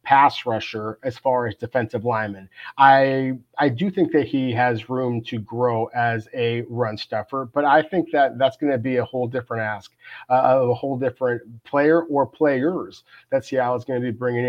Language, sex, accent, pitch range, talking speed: English, male, American, 125-150 Hz, 200 wpm